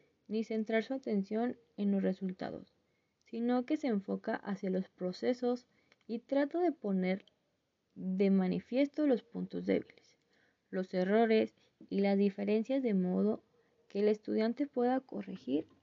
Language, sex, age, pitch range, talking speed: Spanish, female, 20-39, 190-245 Hz, 135 wpm